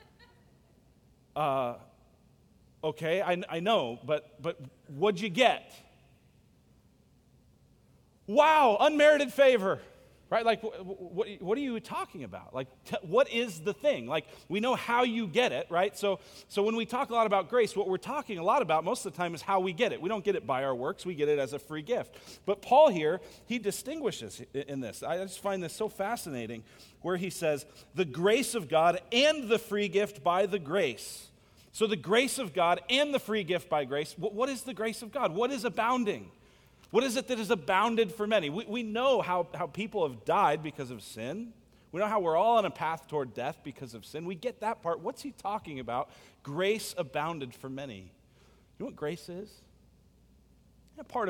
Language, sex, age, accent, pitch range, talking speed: English, male, 40-59, American, 140-225 Hz, 195 wpm